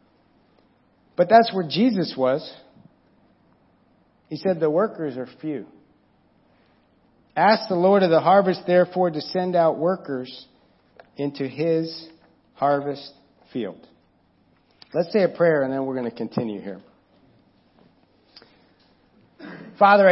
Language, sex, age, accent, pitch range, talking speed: English, male, 50-69, American, 135-185 Hz, 115 wpm